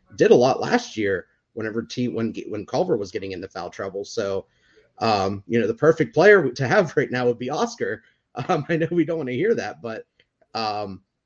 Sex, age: male, 30-49